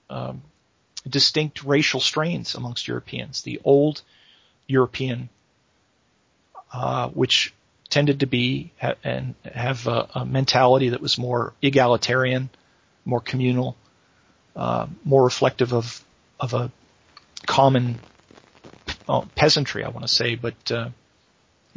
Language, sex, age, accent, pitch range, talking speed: English, male, 40-59, American, 120-140 Hz, 115 wpm